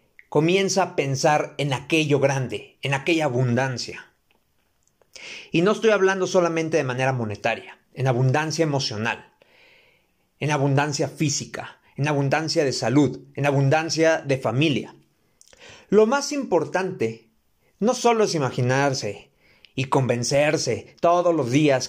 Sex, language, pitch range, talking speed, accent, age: male, Spanish, 140-215 Hz, 120 wpm, Mexican, 40-59